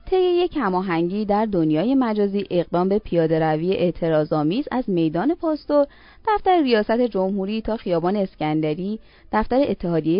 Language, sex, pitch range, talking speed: Persian, female, 165-245 Hz, 130 wpm